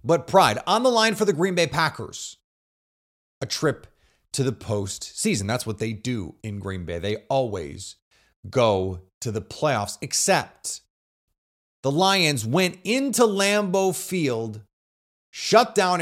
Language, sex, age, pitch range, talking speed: English, male, 30-49, 110-180 Hz, 140 wpm